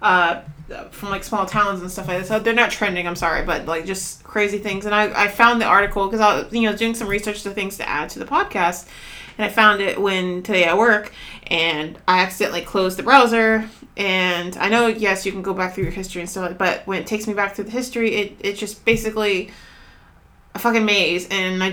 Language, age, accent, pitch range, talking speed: English, 20-39, American, 185-220 Hz, 235 wpm